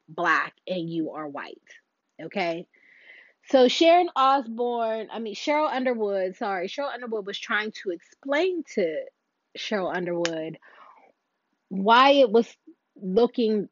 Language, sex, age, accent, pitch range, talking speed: English, female, 20-39, American, 220-315 Hz, 120 wpm